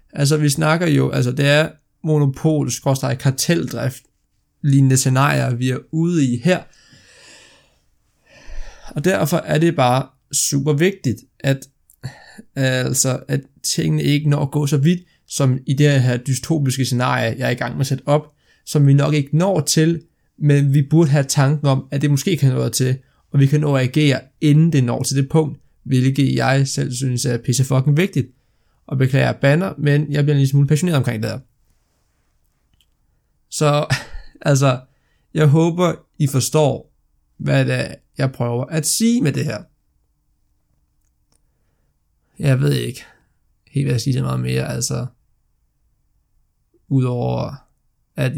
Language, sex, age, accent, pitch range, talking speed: Danish, male, 20-39, native, 125-150 Hz, 160 wpm